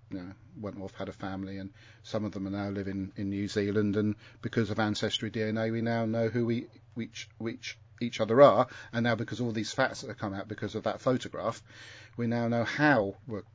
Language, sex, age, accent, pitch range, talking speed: English, male, 40-59, British, 105-115 Hz, 225 wpm